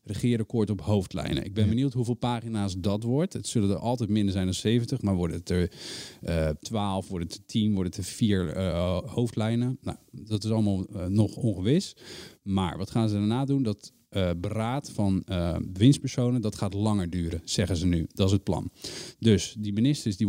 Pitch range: 95-120 Hz